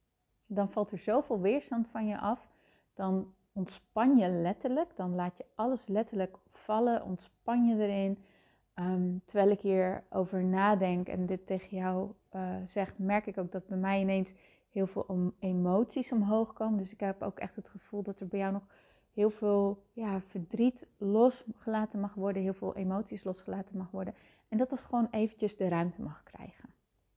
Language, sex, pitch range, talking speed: Dutch, female, 185-215 Hz, 175 wpm